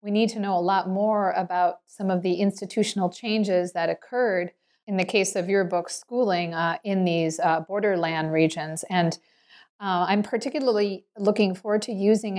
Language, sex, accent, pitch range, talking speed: English, female, American, 175-205 Hz, 175 wpm